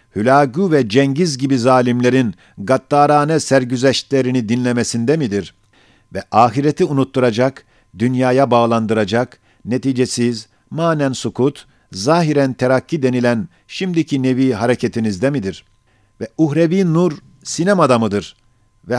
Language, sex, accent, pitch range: Turkish, male, native, 115-140 Hz